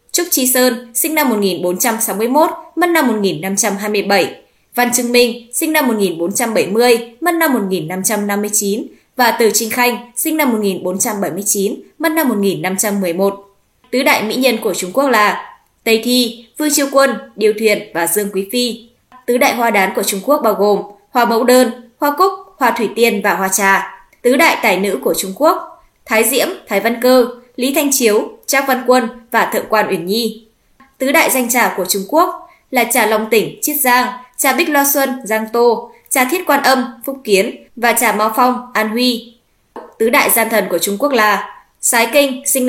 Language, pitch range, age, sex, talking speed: Vietnamese, 205-265 Hz, 20-39, female, 185 wpm